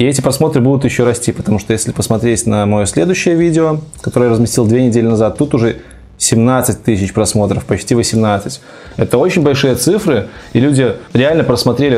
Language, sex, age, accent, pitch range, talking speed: Russian, male, 20-39, native, 110-135 Hz, 175 wpm